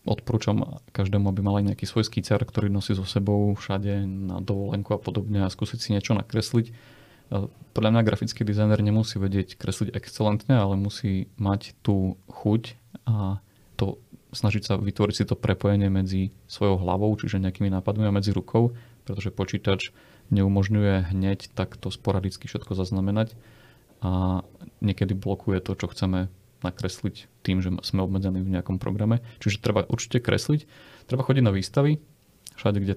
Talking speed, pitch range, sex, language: 155 wpm, 95-115 Hz, male, Slovak